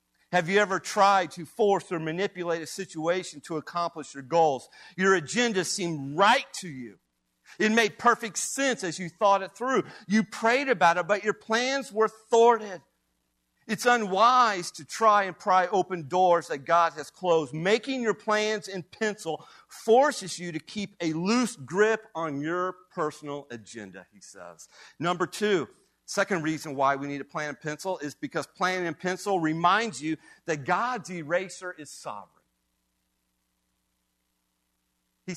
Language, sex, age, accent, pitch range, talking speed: English, male, 50-69, American, 150-200 Hz, 155 wpm